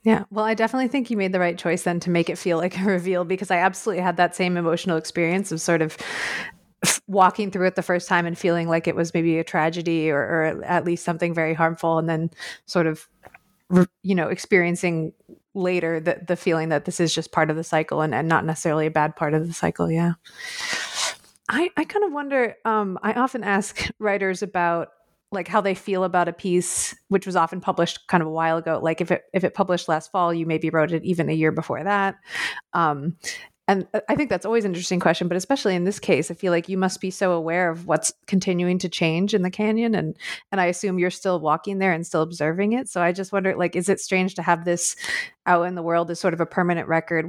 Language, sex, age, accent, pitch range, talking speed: English, female, 30-49, American, 165-195 Hz, 235 wpm